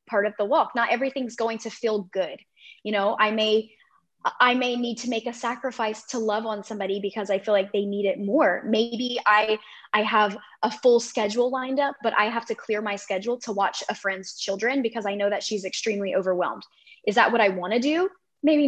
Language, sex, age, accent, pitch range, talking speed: English, female, 10-29, American, 200-245 Hz, 220 wpm